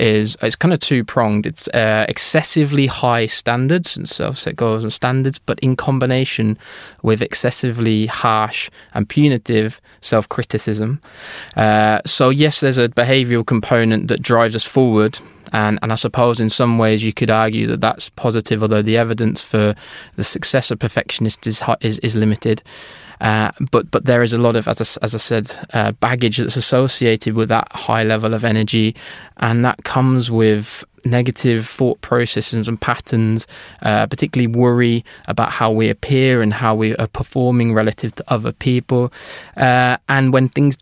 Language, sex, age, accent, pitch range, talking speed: English, male, 20-39, British, 110-130 Hz, 165 wpm